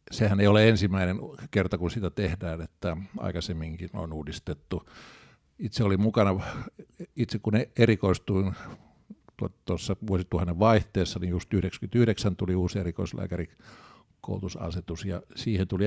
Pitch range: 95-115 Hz